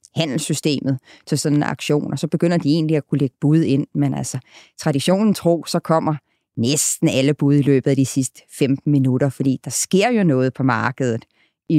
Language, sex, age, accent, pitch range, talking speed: Danish, female, 30-49, native, 135-160 Hz, 200 wpm